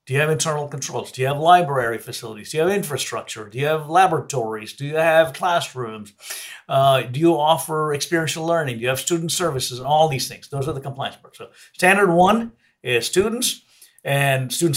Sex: male